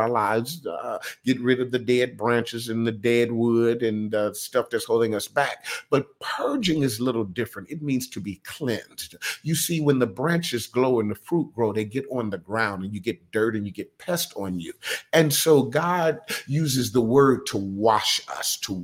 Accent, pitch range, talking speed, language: American, 110-135 Hz, 210 wpm, English